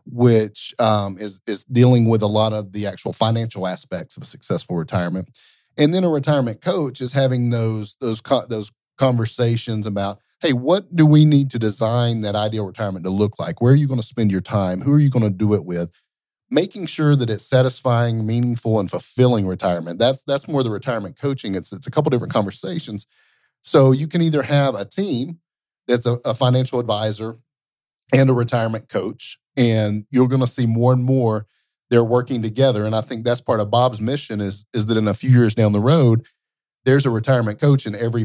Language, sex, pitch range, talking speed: English, male, 105-135 Hz, 205 wpm